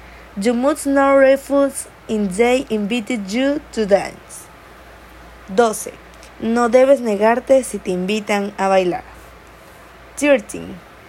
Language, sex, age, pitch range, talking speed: Spanish, female, 20-39, 205-265 Hz, 105 wpm